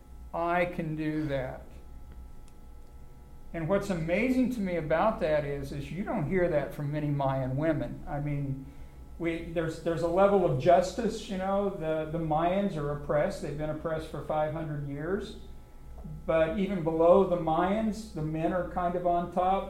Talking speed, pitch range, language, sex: 170 wpm, 140-170 Hz, English, male